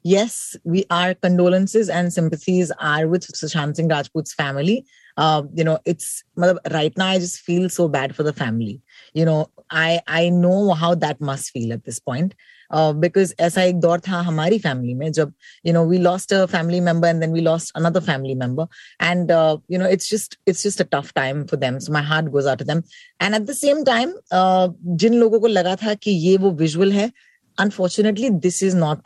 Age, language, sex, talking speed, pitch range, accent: 30-49, Hindi, female, 215 wpm, 160-190 Hz, native